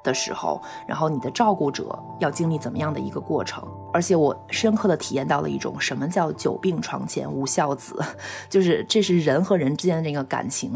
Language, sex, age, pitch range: Chinese, female, 20-39, 155-195 Hz